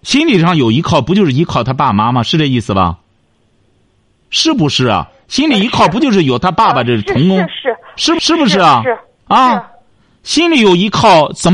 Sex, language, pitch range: male, Chinese, 115-190 Hz